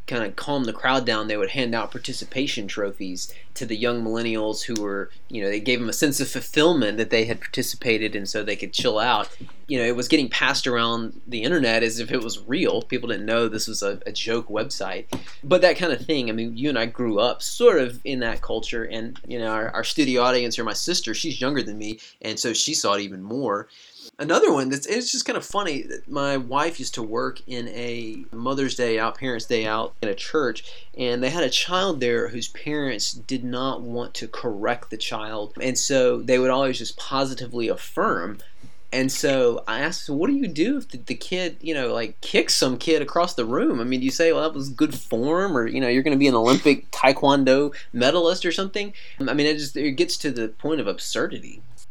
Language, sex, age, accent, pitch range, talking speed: English, male, 20-39, American, 115-140 Hz, 230 wpm